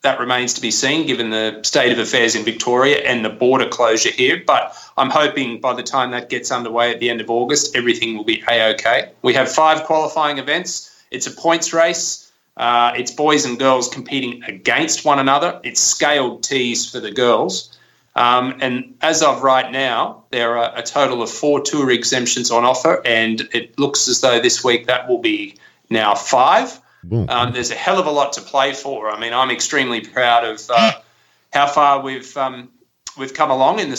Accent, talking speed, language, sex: Australian, 200 wpm, English, male